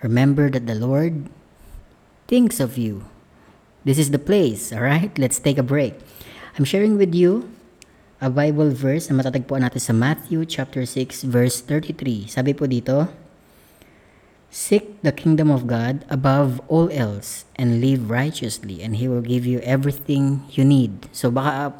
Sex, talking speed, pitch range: female, 145 wpm, 125-155 Hz